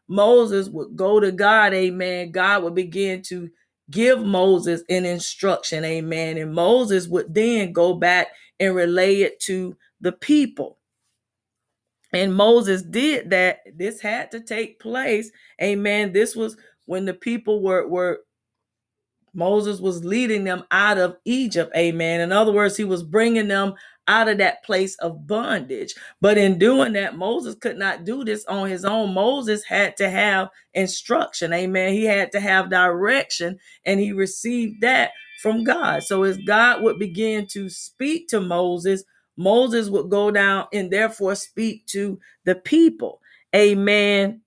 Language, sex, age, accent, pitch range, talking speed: English, female, 40-59, American, 185-225 Hz, 155 wpm